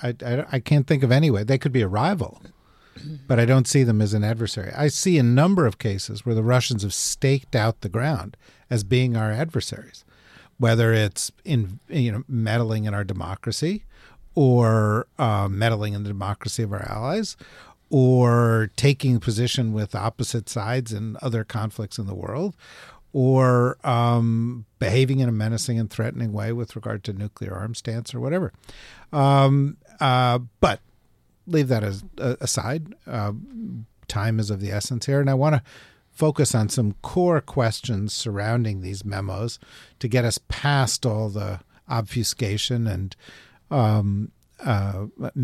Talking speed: 160 wpm